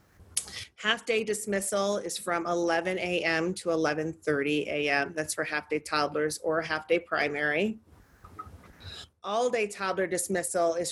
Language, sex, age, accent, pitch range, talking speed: English, female, 40-59, American, 165-195 Hz, 110 wpm